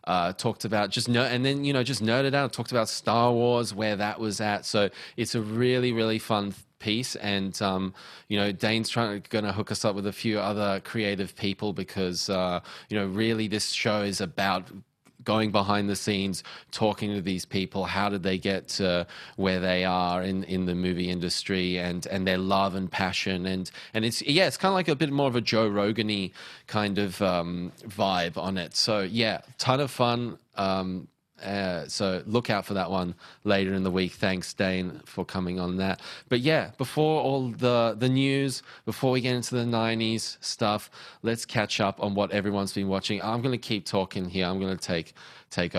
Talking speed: 205 wpm